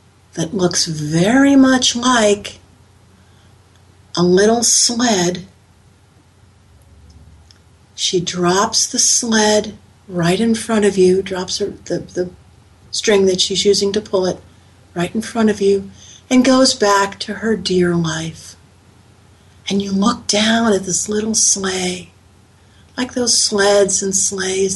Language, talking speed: English, 125 wpm